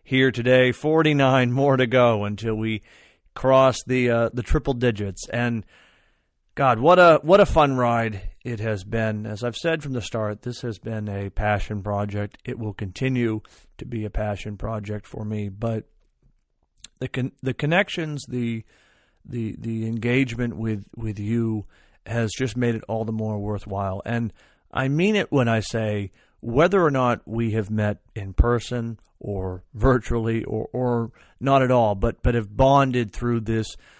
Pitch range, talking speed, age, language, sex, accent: 110-130 Hz, 170 wpm, 40-59, English, male, American